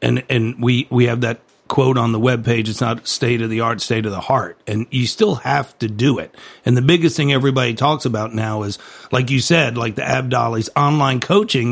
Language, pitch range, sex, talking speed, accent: English, 115-135 Hz, male, 235 wpm, American